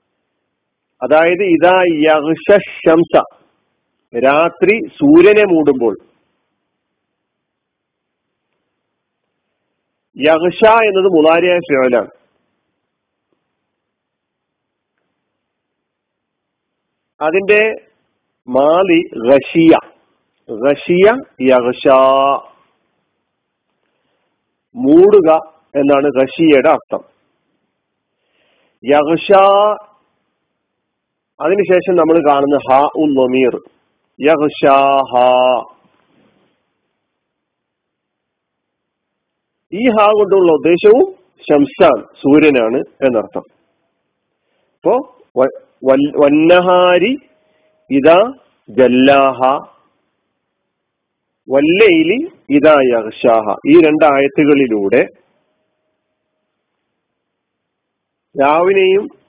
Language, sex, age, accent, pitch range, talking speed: Malayalam, male, 50-69, native, 140-205 Hz, 45 wpm